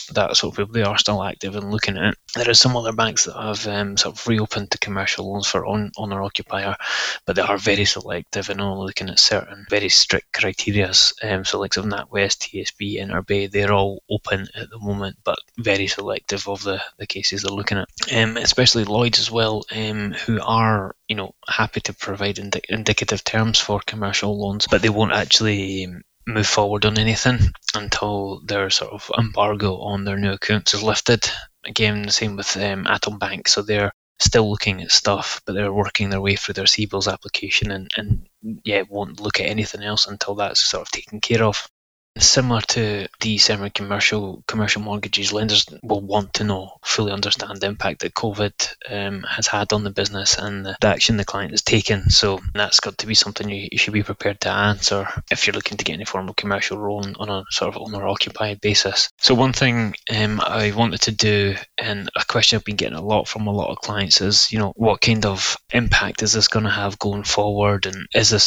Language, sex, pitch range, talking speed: English, male, 100-110 Hz, 210 wpm